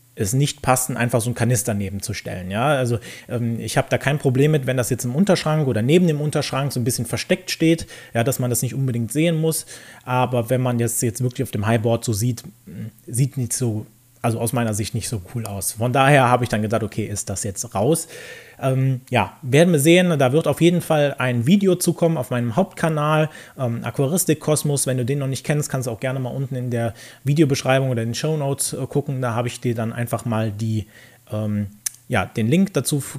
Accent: German